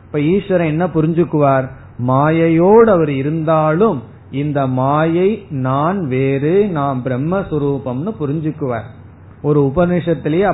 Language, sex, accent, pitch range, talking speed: Tamil, male, native, 130-165 Hz, 85 wpm